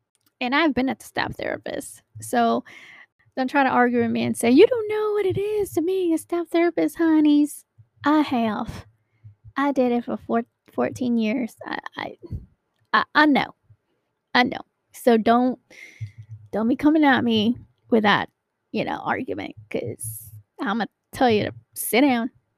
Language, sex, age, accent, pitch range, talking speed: English, female, 10-29, American, 215-275 Hz, 175 wpm